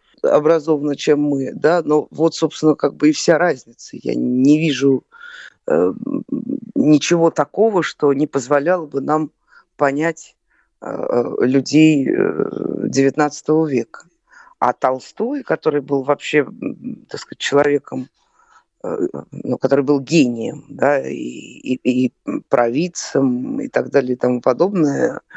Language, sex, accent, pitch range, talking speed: Russian, female, native, 130-165 Hz, 125 wpm